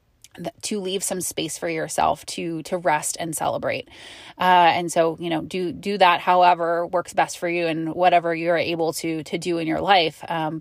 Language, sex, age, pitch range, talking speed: English, female, 20-39, 170-205 Hz, 200 wpm